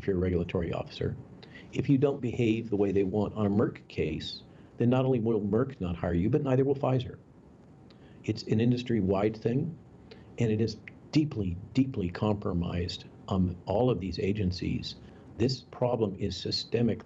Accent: American